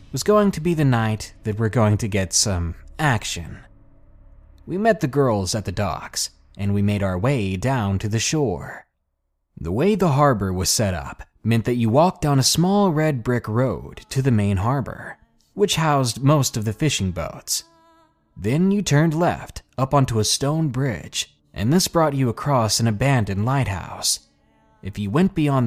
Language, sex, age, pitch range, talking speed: English, male, 20-39, 100-150 Hz, 180 wpm